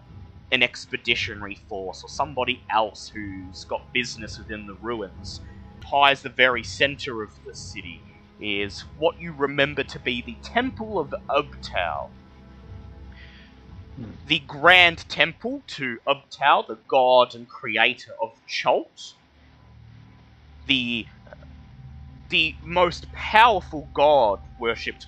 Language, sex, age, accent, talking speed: English, male, 30-49, Australian, 110 wpm